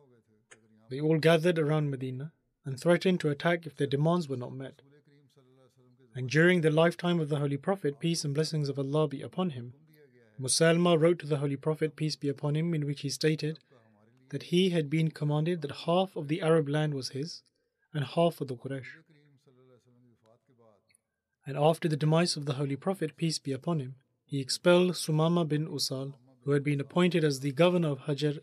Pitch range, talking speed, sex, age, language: 130-160 Hz, 190 wpm, male, 30-49, English